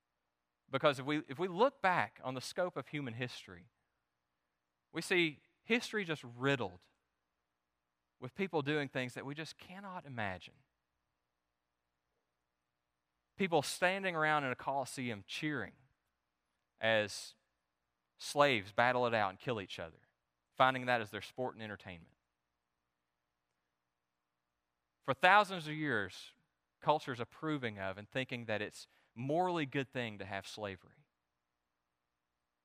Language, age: English, 30-49